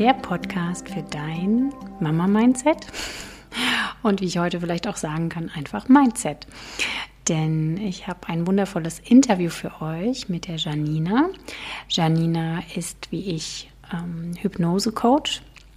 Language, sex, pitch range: German, female, 170-215 Hz